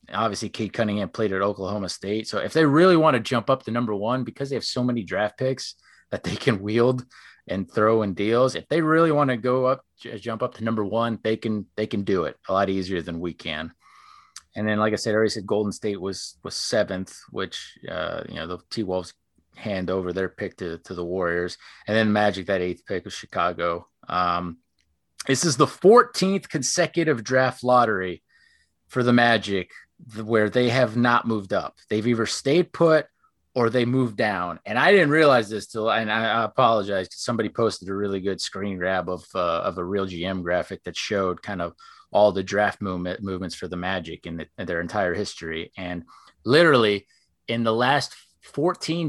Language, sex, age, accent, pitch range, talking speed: English, male, 30-49, American, 95-125 Hz, 205 wpm